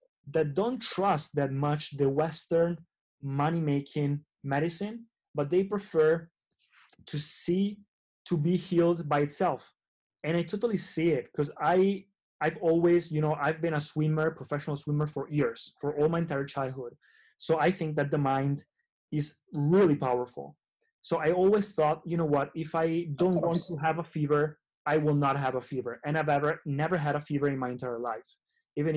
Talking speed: 175 wpm